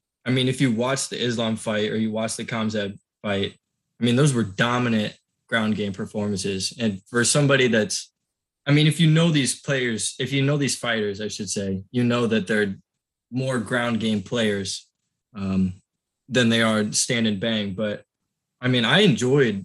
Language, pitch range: English, 110-135 Hz